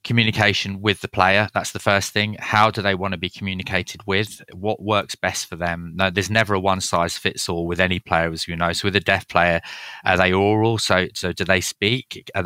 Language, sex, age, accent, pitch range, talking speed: English, male, 20-39, British, 90-105 Hz, 235 wpm